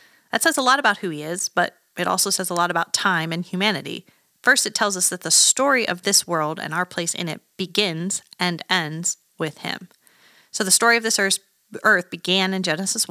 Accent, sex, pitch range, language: American, female, 175-210 Hz, English